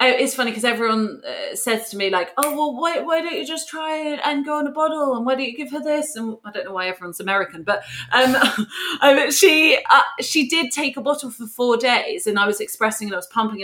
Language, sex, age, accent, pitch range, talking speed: English, female, 30-49, British, 195-265 Hz, 245 wpm